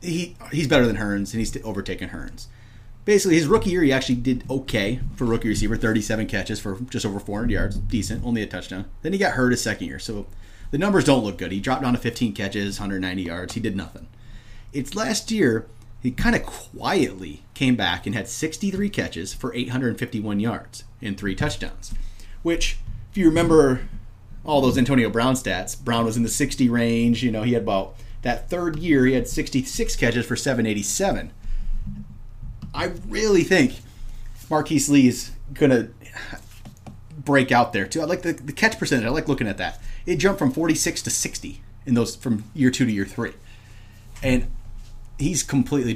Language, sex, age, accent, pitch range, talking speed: English, male, 30-49, American, 105-130 Hz, 195 wpm